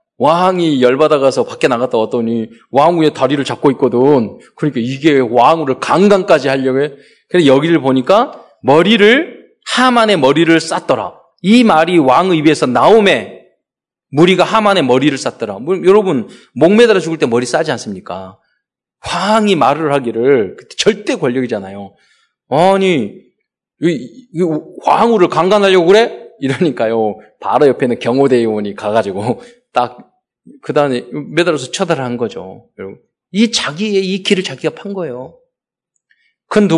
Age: 20-39